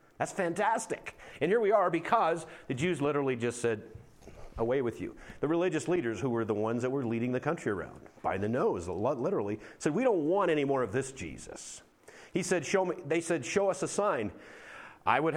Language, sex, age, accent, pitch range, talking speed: English, male, 50-69, American, 120-175 Hz, 205 wpm